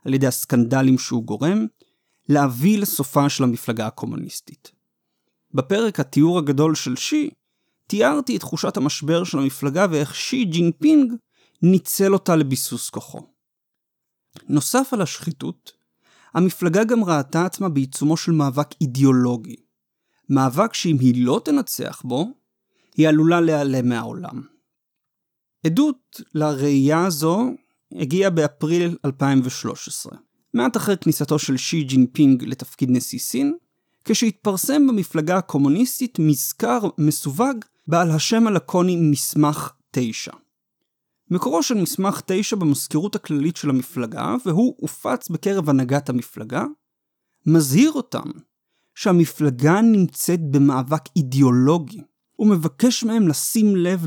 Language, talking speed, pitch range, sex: Hebrew, 110 wpm, 140-200 Hz, male